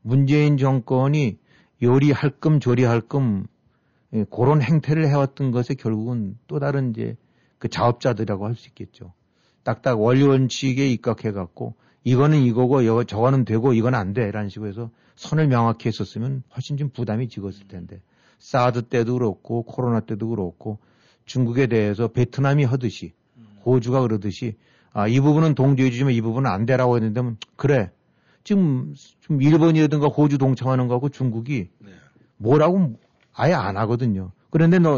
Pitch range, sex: 110-140 Hz, male